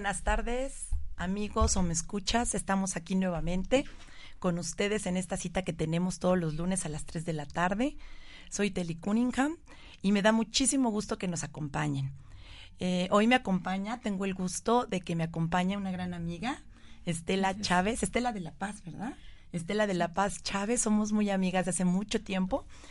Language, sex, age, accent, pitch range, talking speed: Spanish, female, 40-59, Mexican, 165-200 Hz, 180 wpm